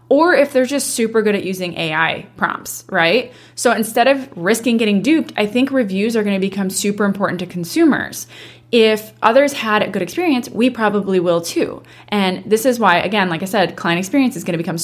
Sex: female